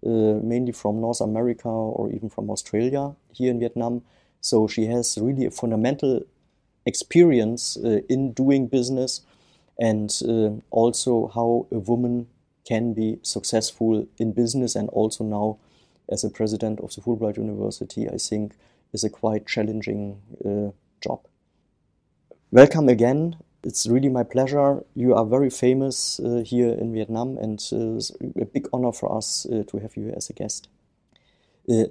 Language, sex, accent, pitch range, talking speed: German, male, German, 110-125 Hz, 155 wpm